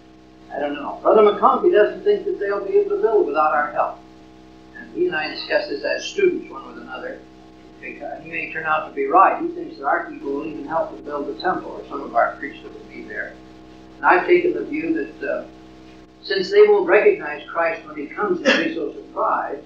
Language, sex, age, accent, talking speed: English, male, 50-69, American, 230 wpm